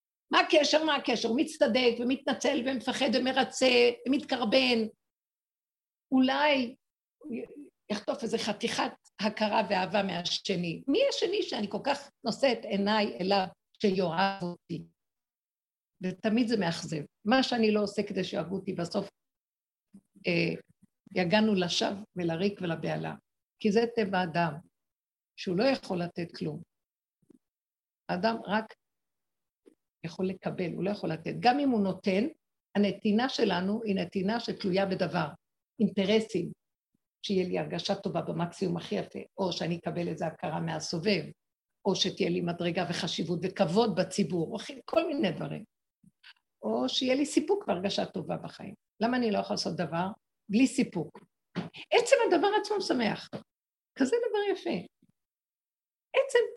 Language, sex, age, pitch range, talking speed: Hebrew, female, 50-69, 185-265 Hz, 125 wpm